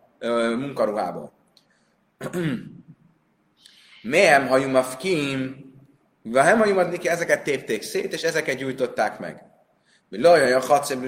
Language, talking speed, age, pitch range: Hungarian, 90 wpm, 30-49, 130-170 Hz